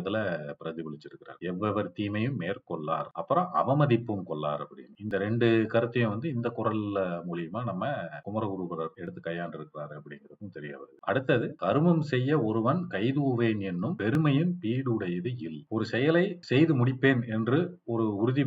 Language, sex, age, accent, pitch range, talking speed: Tamil, male, 40-59, native, 95-125 Hz, 35 wpm